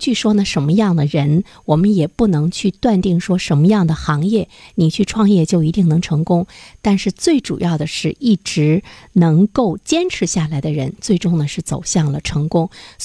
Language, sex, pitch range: Chinese, female, 160-205 Hz